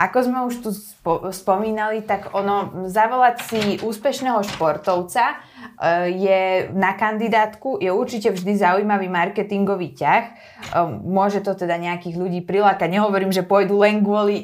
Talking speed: 130 wpm